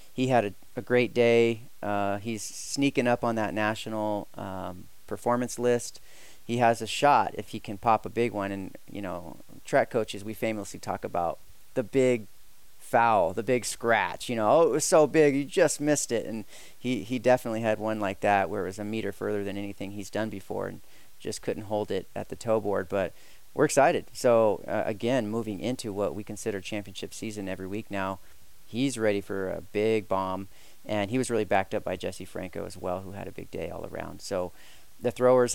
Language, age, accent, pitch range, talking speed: English, 30-49, American, 100-120 Hz, 210 wpm